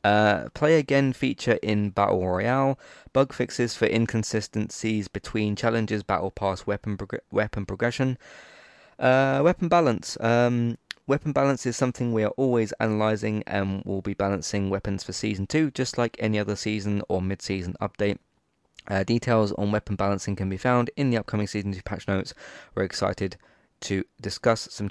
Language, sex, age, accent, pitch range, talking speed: English, male, 20-39, British, 95-115 Hz, 160 wpm